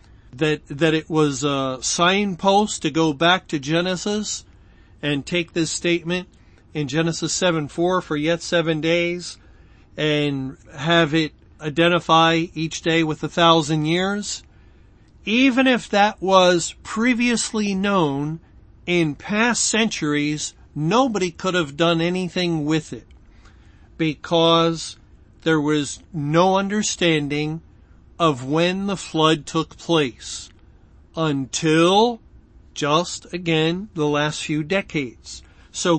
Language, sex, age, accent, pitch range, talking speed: English, male, 50-69, American, 145-180 Hz, 110 wpm